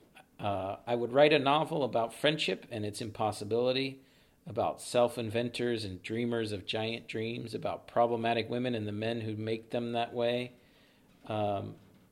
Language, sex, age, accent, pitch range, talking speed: English, male, 40-59, American, 105-125 Hz, 150 wpm